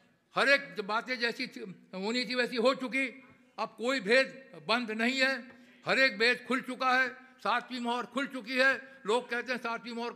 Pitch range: 190-255 Hz